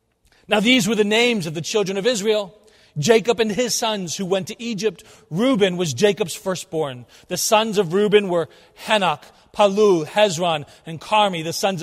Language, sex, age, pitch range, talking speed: English, male, 40-59, 165-210 Hz, 170 wpm